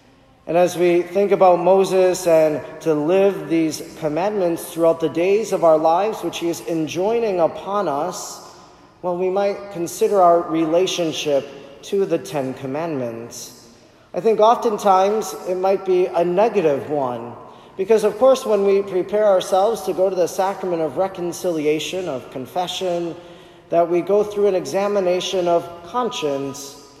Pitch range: 150-195 Hz